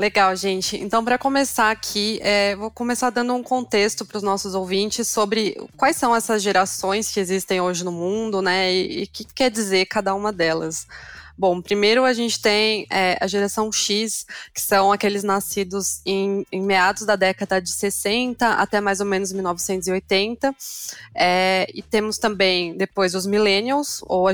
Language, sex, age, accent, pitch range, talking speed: Portuguese, female, 20-39, Brazilian, 185-210 Hz, 165 wpm